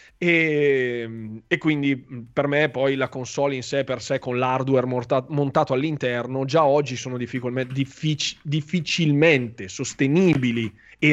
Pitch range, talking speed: 125-145 Hz, 120 wpm